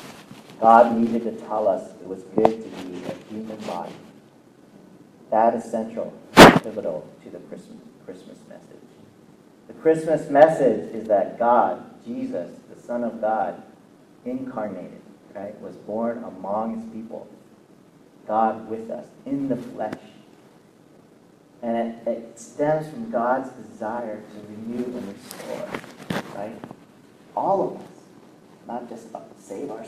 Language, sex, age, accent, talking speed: English, male, 40-59, American, 135 wpm